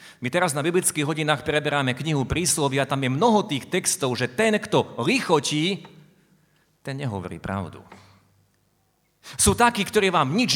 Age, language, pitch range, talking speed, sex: 40-59, Slovak, 130-175 Hz, 140 wpm, male